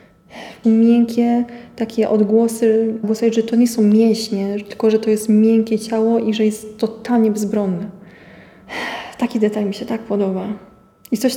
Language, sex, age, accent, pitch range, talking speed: Polish, female, 20-39, native, 205-225 Hz, 155 wpm